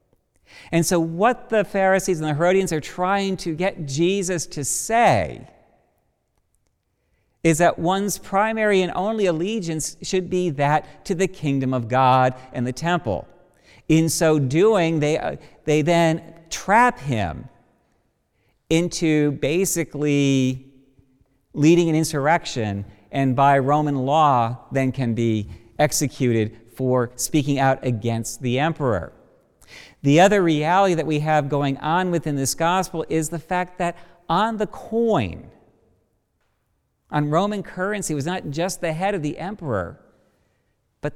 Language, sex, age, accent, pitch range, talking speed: English, male, 50-69, American, 130-175 Hz, 135 wpm